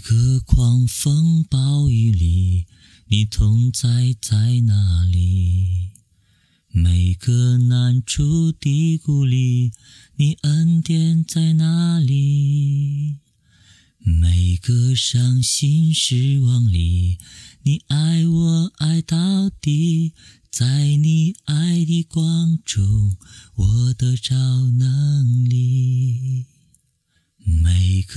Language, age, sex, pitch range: Chinese, 30-49, male, 110-150 Hz